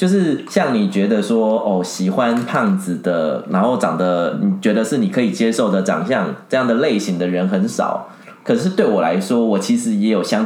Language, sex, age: Chinese, male, 20-39